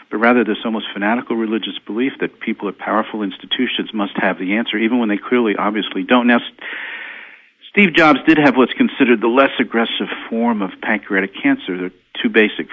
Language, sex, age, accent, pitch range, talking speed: English, male, 50-69, American, 95-140 Hz, 190 wpm